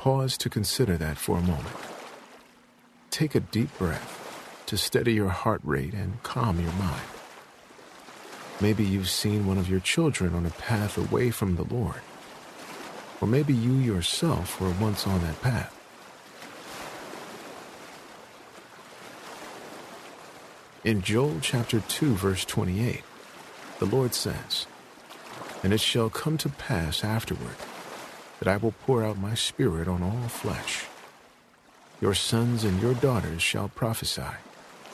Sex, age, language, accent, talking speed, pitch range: male, 50-69, English, American, 130 wpm, 95-120 Hz